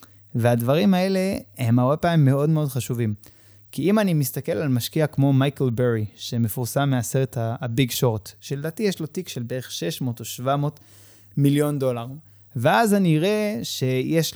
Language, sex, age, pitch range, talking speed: Hebrew, male, 20-39, 120-160 Hz, 145 wpm